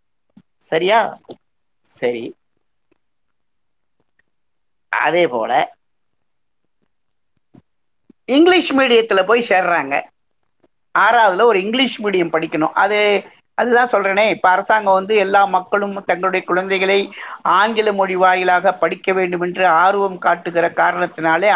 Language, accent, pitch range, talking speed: Tamil, native, 180-230 Hz, 90 wpm